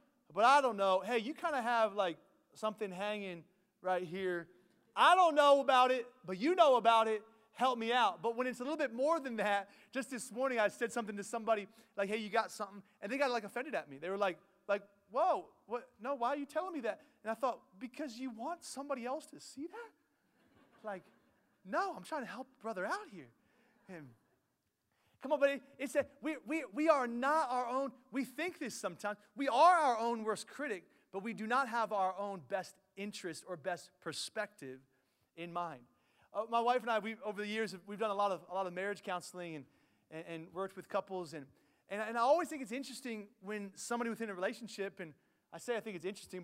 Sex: male